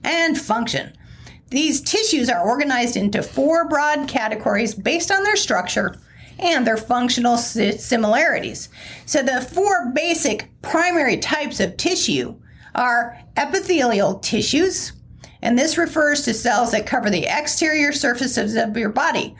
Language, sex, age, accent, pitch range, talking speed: English, female, 40-59, American, 245-335 Hz, 130 wpm